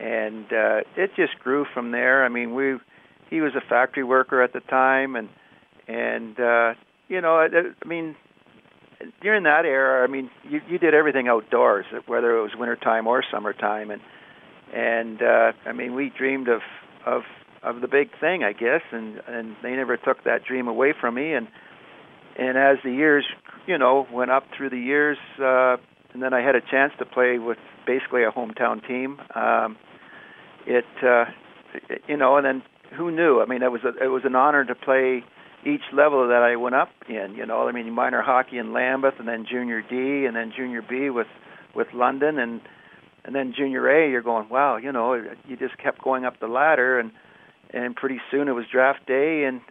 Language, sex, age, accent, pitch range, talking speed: English, male, 50-69, American, 120-140 Hz, 200 wpm